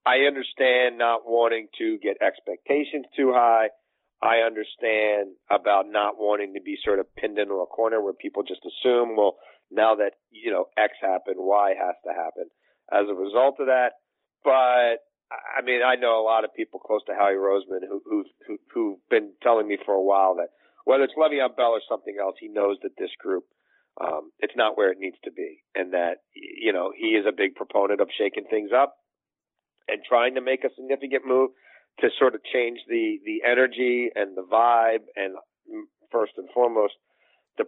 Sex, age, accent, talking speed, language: male, 50-69, American, 190 wpm, English